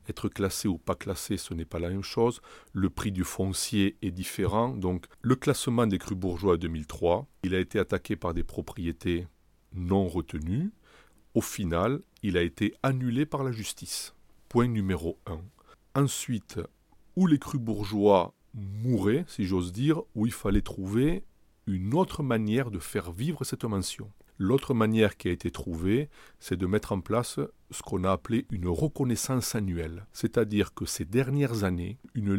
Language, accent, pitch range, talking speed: French, French, 95-130 Hz, 170 wpm